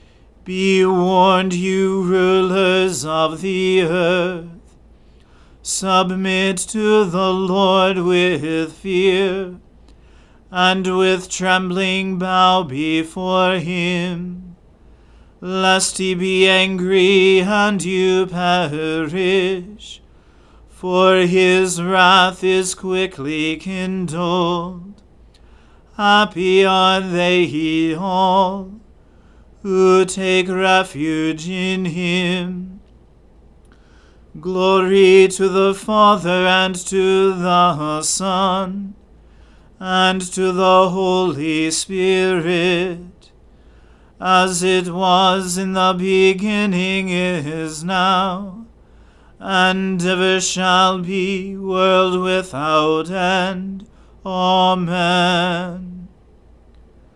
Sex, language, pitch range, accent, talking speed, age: male, English, 175-190 Hz, American, 75 wpm, 40-59